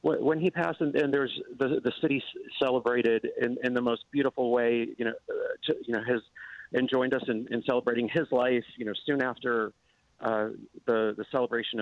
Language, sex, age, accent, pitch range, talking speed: English, male, 40-59, American, 115-140 Hz, 185 wpm